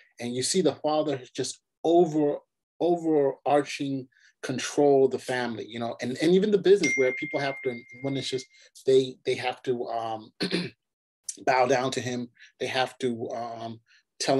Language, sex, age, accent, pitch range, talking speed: English, male, 30-49, American, 125-185 Hz, 165 wpm